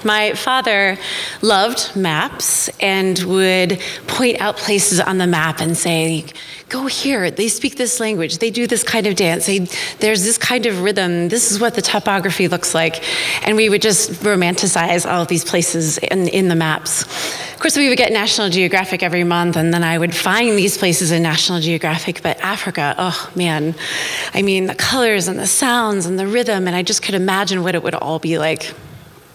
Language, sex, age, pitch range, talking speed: English, female, 30-49, 180-240 Hz, 195 wpm